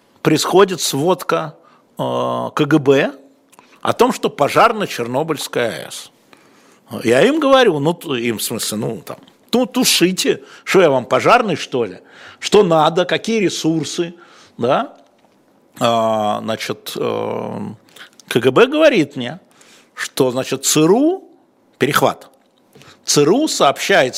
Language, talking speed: Russian, 110 wpm